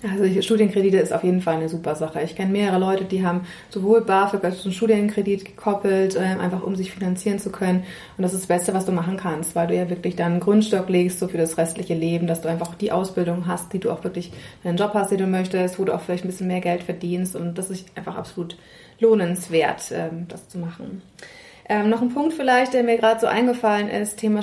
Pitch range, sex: 185-220 Hz, female